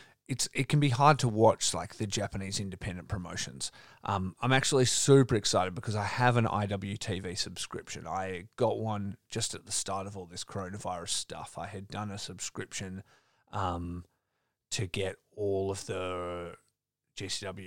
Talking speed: 160 wpm